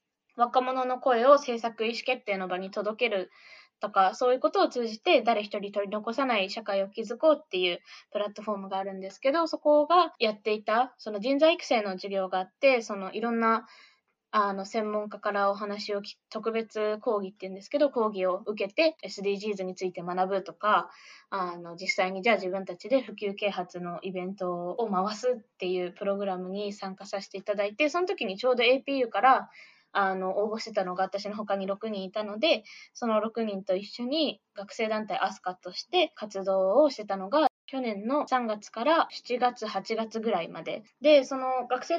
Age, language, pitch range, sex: 20-39, English, 200-255 Hz, female